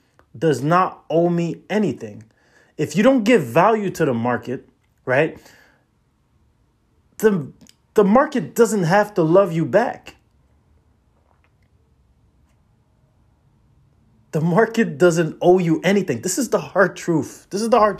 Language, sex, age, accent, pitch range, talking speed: English, male, 20-39, American, 115-185 Hz, 125 wpm